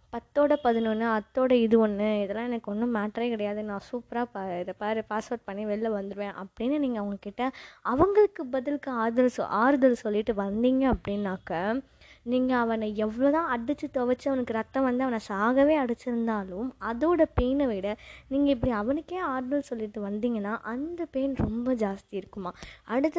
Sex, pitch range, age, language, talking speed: female, 210-265 Hz, 20-39, Tamil, 140 wpm